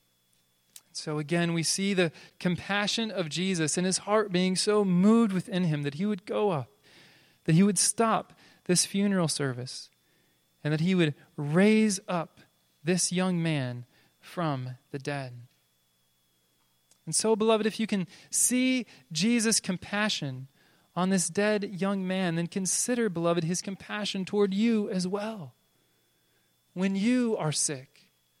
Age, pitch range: 30-49, 150-210 Hz